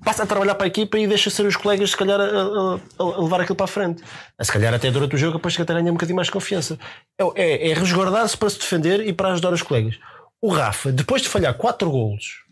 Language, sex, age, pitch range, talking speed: Portuguese, male, 20-39, 145-200 Hz, 265 wpm